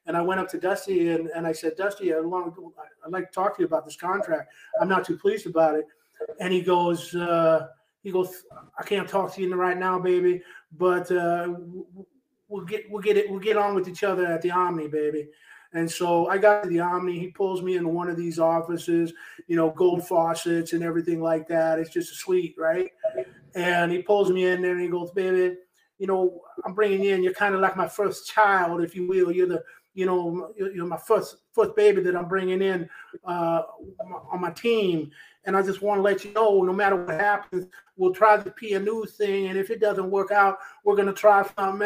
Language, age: English, 30-49